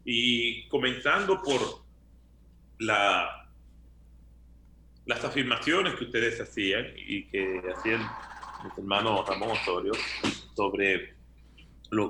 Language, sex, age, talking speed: Spanish, male, 40-59, 90 wpm